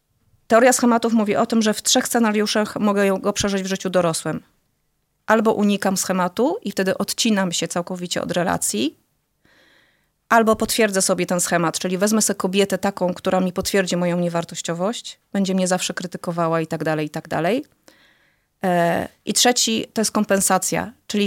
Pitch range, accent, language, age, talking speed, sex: 185-225 Hz, native, Polish, 30-49, 160 wpm, female